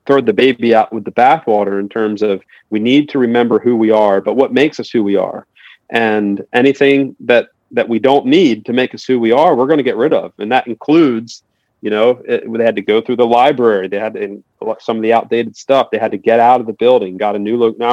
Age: 40-59